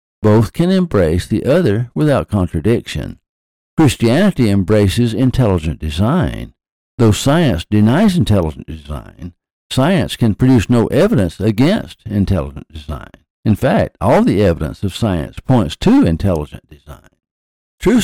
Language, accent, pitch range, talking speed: English, American, 85-120 Hz, 120 wpm